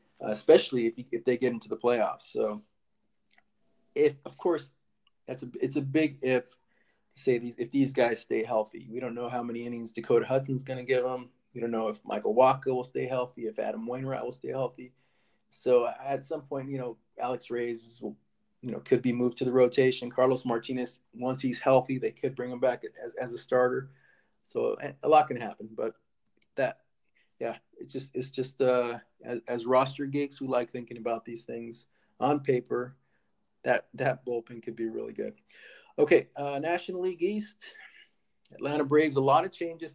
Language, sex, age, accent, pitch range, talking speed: English, male, 20-39, American, 120-145 Hz, 190 wpm